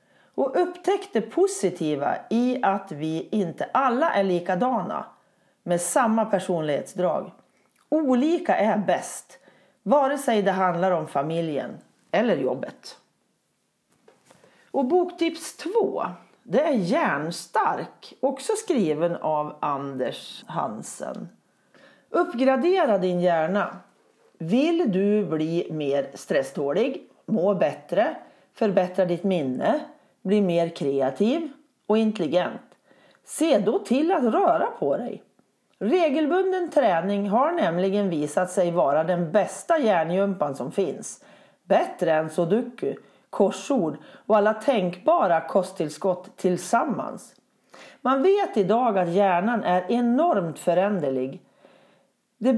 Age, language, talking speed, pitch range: 40-59, Swedish, 105 wpm, 175-275 Hz